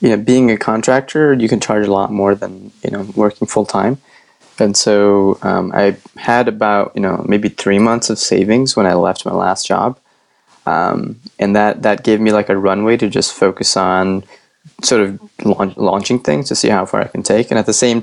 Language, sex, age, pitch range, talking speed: English, male, 20-39, 95-110 Hz, 215 wpm